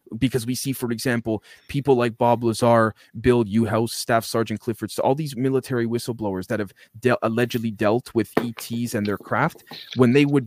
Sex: male